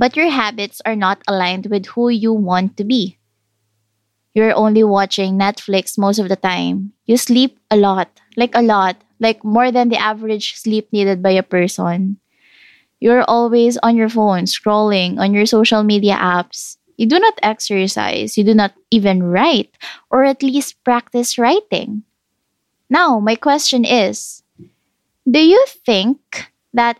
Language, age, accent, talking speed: English, 20-39, Filipino, 155 wpm